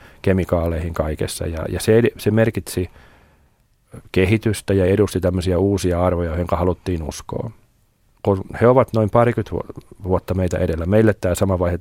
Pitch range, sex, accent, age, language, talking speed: 90-105 Hz, male, native, 40-59, Finnish, 135 wpm